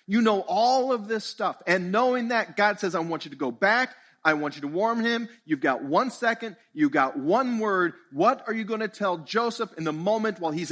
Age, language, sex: 40-59, English, male